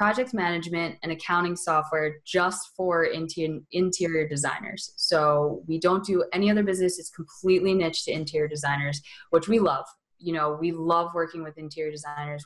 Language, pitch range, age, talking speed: English, 150-180 Hz, 20-39, 160 wpm